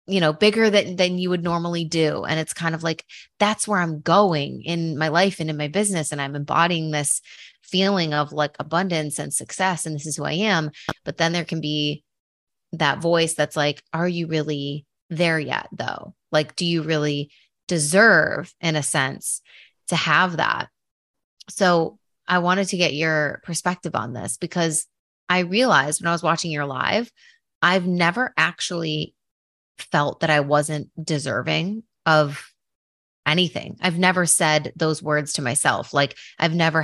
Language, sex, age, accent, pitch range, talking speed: English, female, 20-39, American, 150-185 Hz, 170 wpm